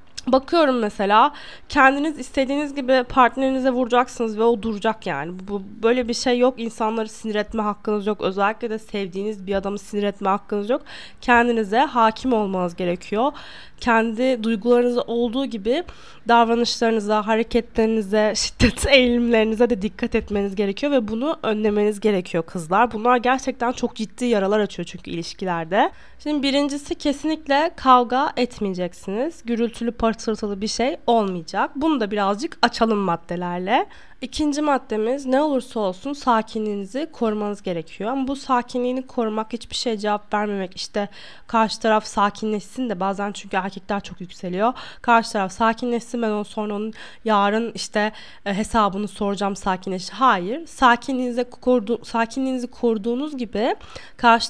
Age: 10-29